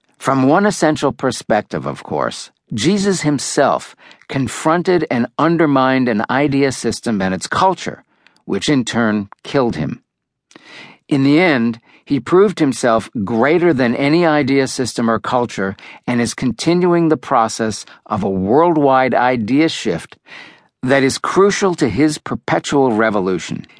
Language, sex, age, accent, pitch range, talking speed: English, male, 50-69, American, 115-155 Hz, 130 wpm